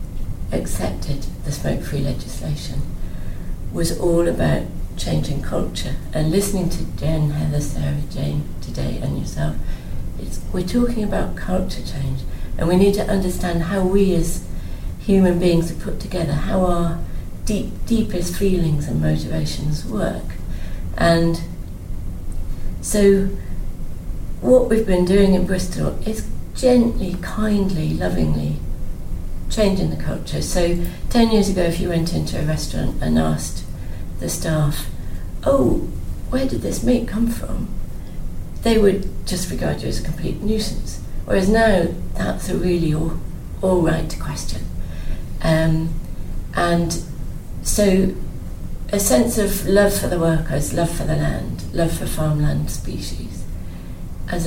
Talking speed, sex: 130 wpm, female